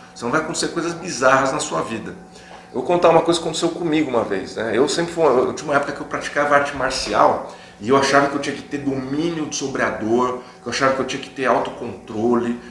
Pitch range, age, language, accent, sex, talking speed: 120-155 Hz, 40-59, Portuguese, Brazilian, male, 250 wpm